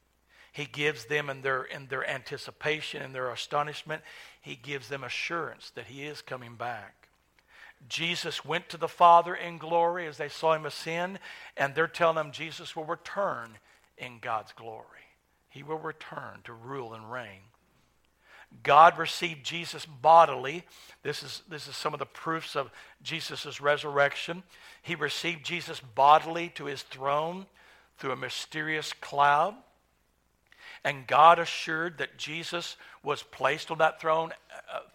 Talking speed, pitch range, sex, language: 150 wpm, 135-165 Hz, male, English